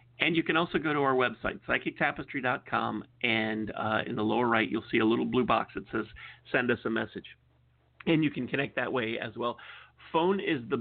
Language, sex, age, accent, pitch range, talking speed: English, male, 40-59, American, 110-125 Hz, 210 wpm